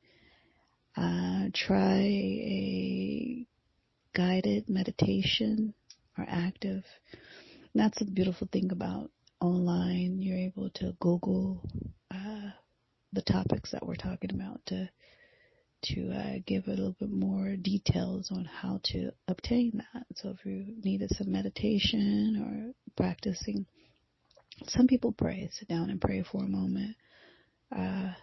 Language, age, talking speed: English, 30-49, 125 wpm